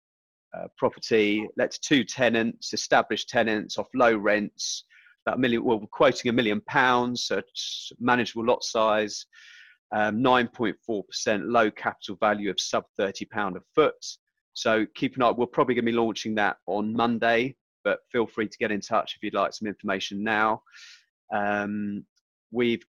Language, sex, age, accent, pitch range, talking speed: English, male, 30-49, British, 105-125 Hz, 160 wpm